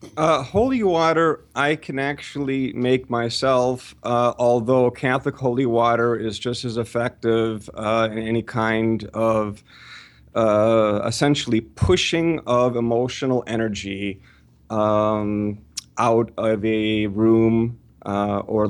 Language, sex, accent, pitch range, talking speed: English, male, American, 110-125 Hz, 110 wpm